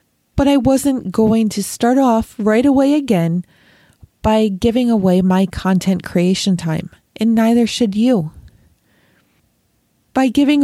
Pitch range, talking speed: 205-265 Hz, 130 wpm